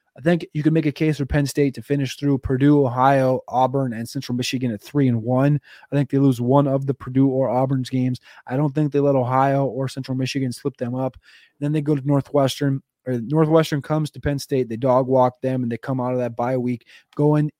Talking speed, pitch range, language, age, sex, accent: 240 wpm, 130-155 Hz, English, 20-39, male, American